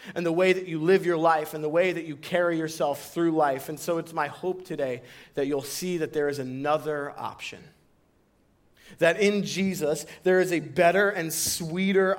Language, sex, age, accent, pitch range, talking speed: English, male, 30-49, American, 150-190 Hz, 195 wpm